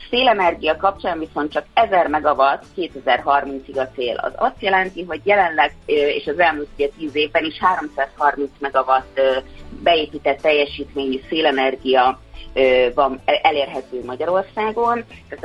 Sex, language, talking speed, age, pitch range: female, Hungarian, 115 wpm, 30-49, 140-180 Hz